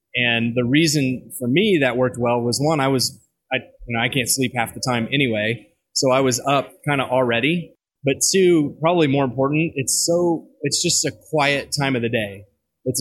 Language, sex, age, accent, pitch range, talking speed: English, male, 20-39, American, 120-140 Hz, 210 wpm